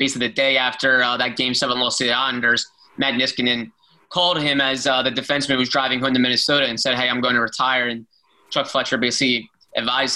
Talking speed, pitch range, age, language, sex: 220 wpm, 130-155 Hz, 20-39, English, male